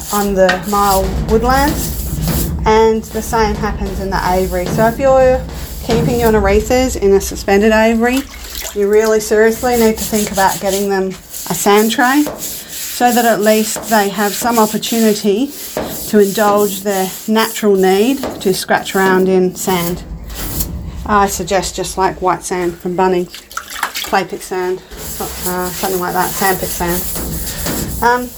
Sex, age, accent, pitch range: female, 30-49, Australian, 190-230 Hz